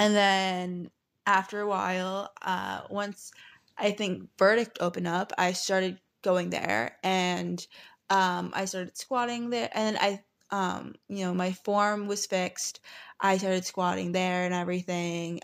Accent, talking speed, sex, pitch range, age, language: American, 150 wpm, female, 175-195 Hz, 20-39, English